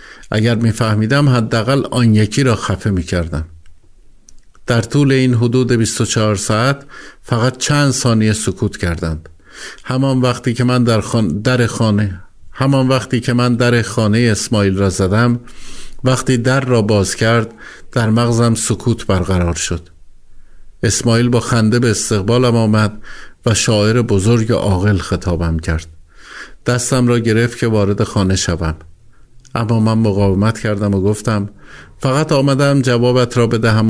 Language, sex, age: Persian, male, 50-69